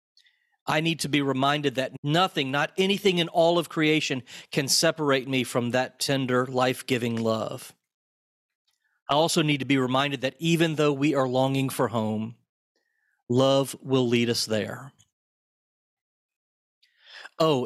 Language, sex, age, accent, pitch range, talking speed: English, male, 40-59, American, 120-150 Hz, 140 wpm